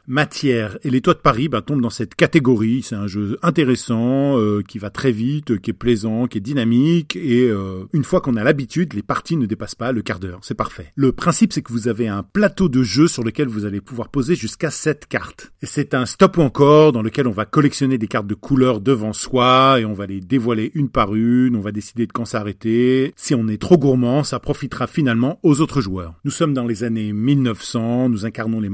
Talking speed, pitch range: 235 wpm, 110-150 Hz